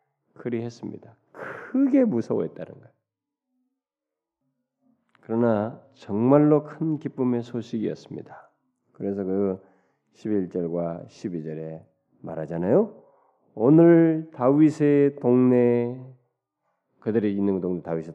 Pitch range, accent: 110-165 Hz, native